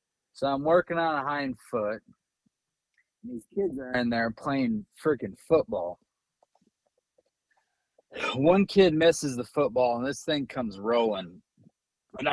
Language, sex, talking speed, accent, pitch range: English, male, 130 wpm, American, 125-185 Hz